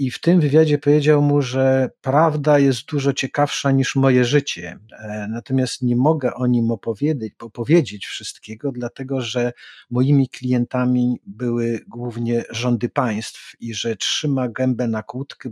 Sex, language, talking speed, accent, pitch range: male, Polish, 140 wpm, native, 110-140 Hz